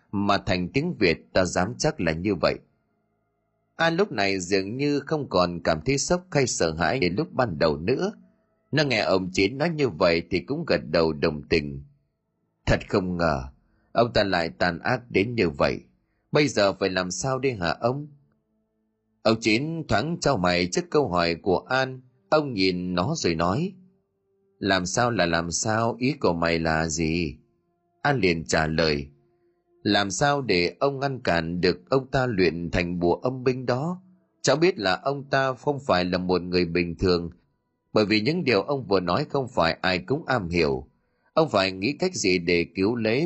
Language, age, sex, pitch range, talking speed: Vietnamese, 30-49, male, 90-140 Hz, 190 wpm